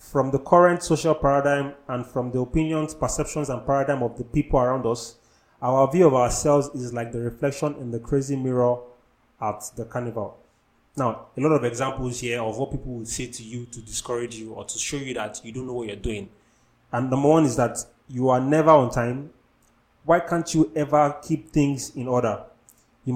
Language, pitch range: English, 120-150 Hz